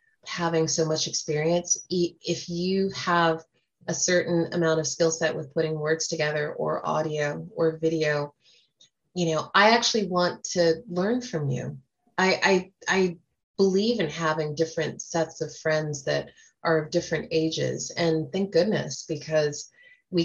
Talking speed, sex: 150 wpm, female